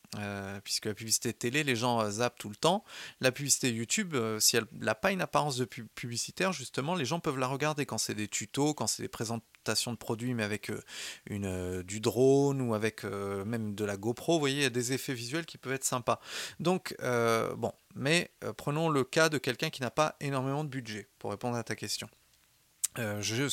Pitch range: 115-150 Hz